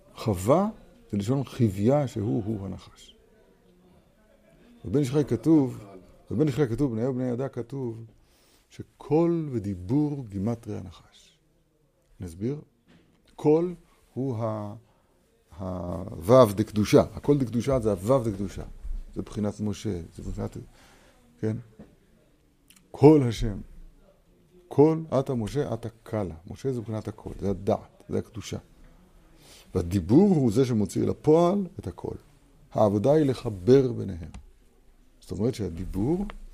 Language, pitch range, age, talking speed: Hebrew, 100-140 Hz, 50-69, 115 wpm